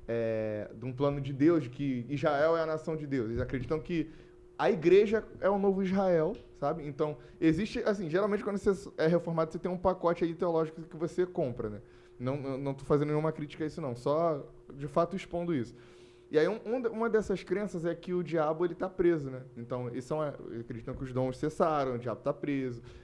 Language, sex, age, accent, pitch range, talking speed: Portuguese, male, 10-29, Brazilian, 125-185 Hz, 215 wpm